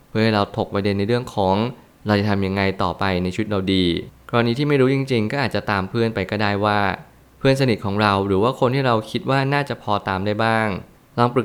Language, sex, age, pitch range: Thai, male, 20-39, 100-120 Hz